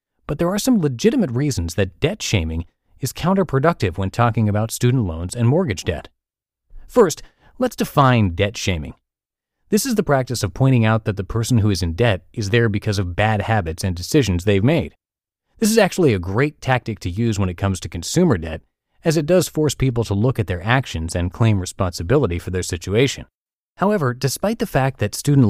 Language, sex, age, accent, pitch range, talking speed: English, male, 30-49, American, 95-135 Hz, 200 wpm